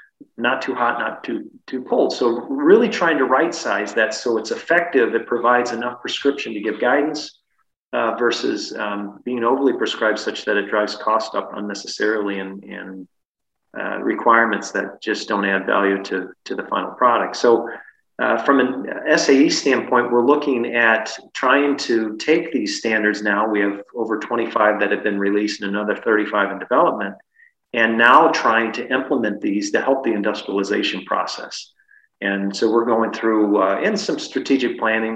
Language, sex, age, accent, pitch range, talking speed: English, male, 30-49, American, 105-125 Hz, 170 wpm